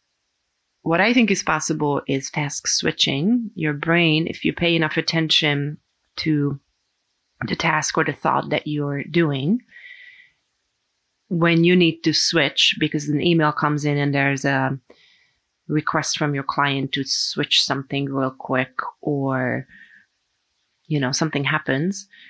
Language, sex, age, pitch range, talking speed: English, female, 30-49, 140-165 Hz, 135 wpm